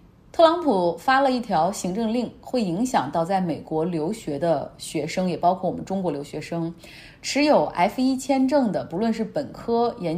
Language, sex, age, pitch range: Chinese, female, 30-49, 170-255 Hz